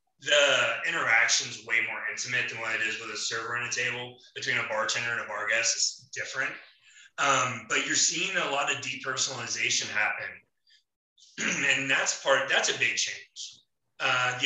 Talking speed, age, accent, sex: 180 wpm, 20-39, American, male